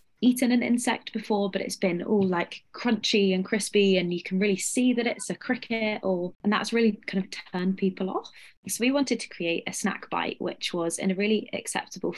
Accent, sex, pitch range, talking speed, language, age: British, female, 180-220 Hz, 215 wpm, English, 20-39